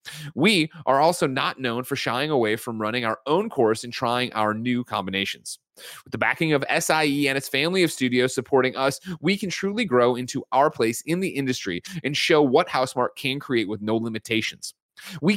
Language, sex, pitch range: English, male, 110-150 Hz